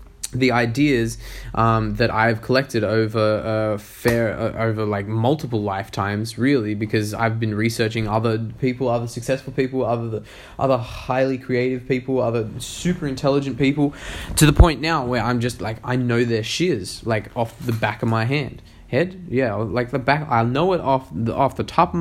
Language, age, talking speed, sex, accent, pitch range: English, 20-39, 180 wpm, male, Australian, 115-145 Hz